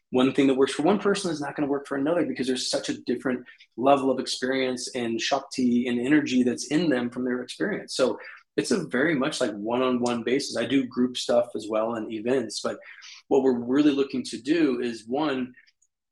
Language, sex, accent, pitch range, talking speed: English, male, American, 125-150 Hz, 210 wpm